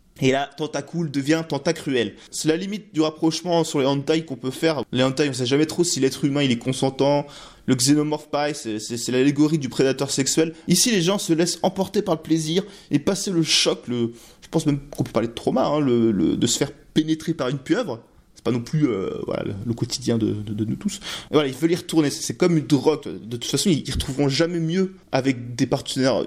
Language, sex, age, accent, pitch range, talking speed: French, male, 20-39, French, 135-165 Hz, 245 wpm